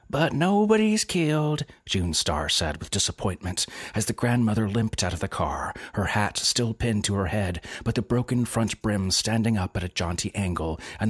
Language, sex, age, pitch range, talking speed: English, male, 30-49, 85-115 Hz, 190 wpm